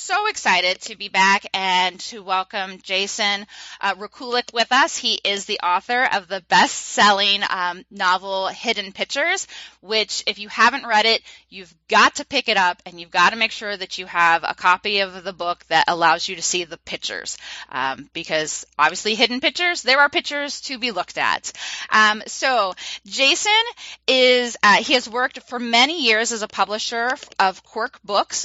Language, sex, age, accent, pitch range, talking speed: English, female, 20-39, American, 185-245 Hz, 180 wpm